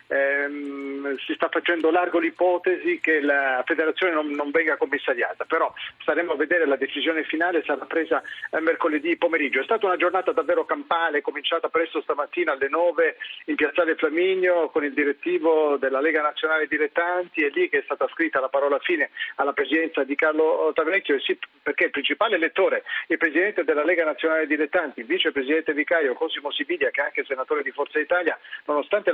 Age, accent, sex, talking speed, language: 40-59, native, male, 170 wpm, Italian